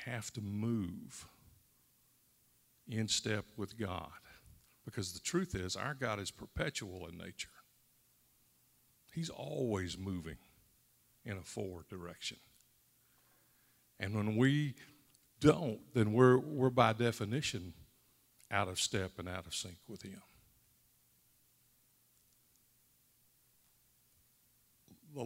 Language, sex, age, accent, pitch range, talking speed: English, male, 60-79, American, 95-125 Hz, 100 wpm